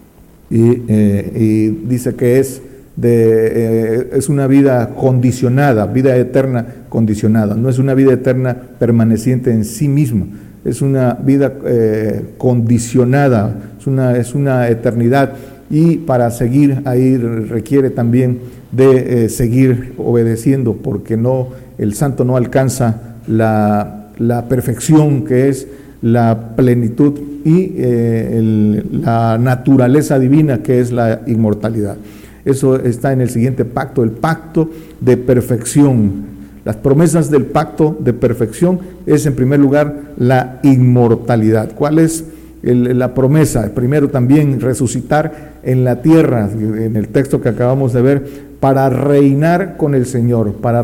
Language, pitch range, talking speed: Spanish, 115-140 Hz, 130 wpm